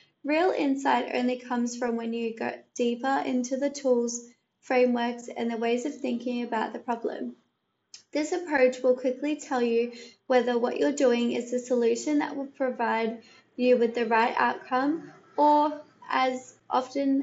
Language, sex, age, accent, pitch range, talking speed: English, female, 20-39, Australian, 240-280 Hz, 155 wpm